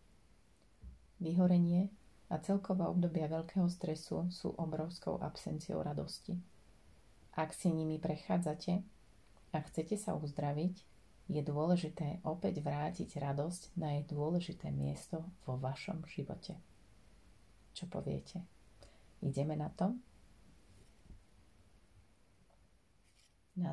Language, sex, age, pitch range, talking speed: Slovak, female, 30-49, 130-180 Hz, 90 wpm